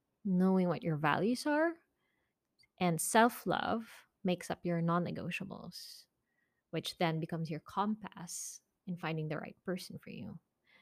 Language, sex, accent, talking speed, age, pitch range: English, female, Filipino, 130 wpm, 20-39, 170-220 Hz